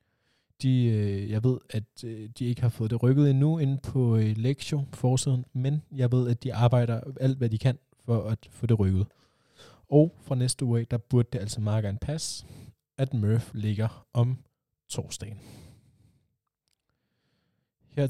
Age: 20-39